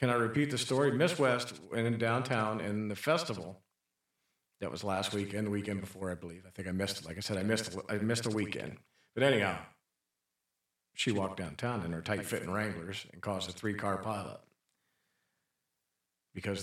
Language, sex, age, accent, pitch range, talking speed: English, male, 50-69, American, 95-120 Hz, 190 wpm